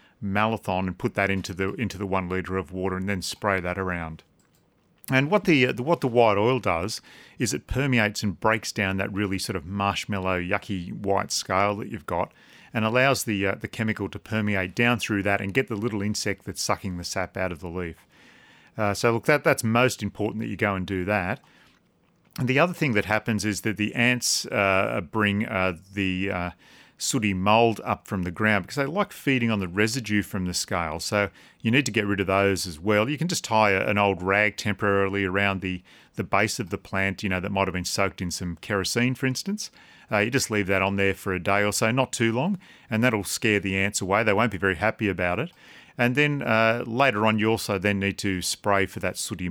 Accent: Australian